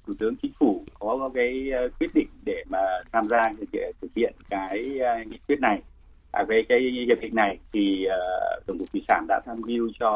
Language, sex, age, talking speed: Vietnamese, male, 30-49, 205 wpm